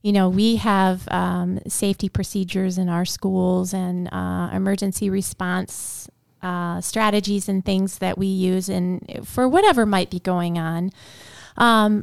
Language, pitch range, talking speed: English, 180-220 Hz, 140 wpm